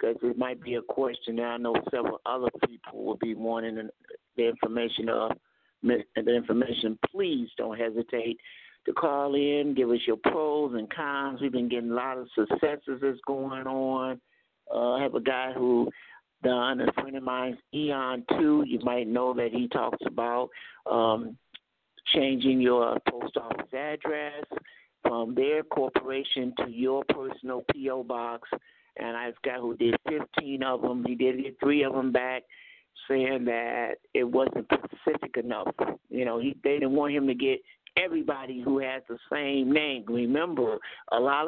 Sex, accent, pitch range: male, American, 125-145 Hz